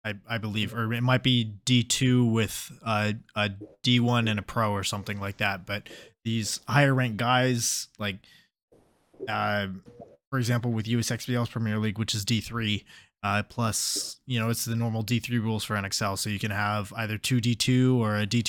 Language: English